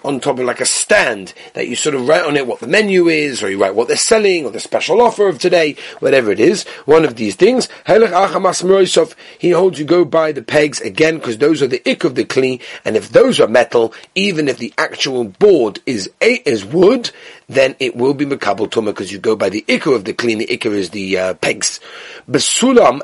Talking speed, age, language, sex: 225 wpm, 40-59, English, male